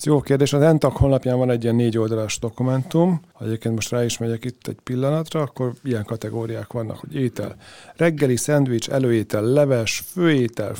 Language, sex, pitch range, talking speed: Hungarian, male, 115-140 Hz, 170 wpm